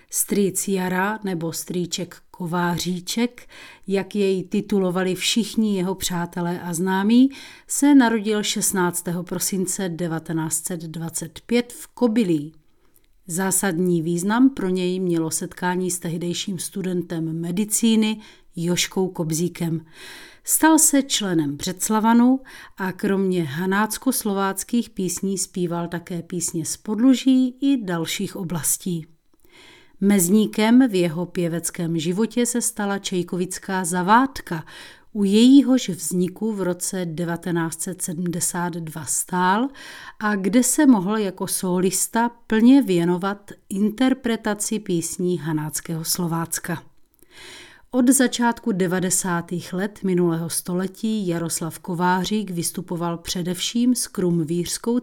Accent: native